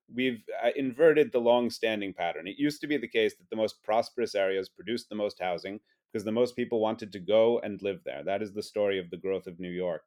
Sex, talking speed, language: male, 250 wpm, English